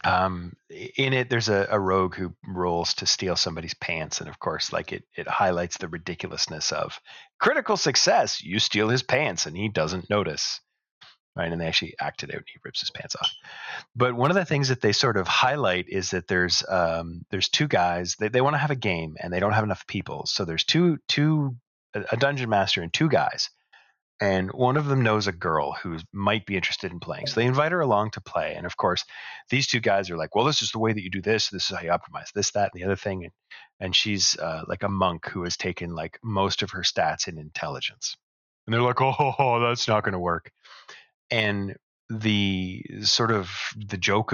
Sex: male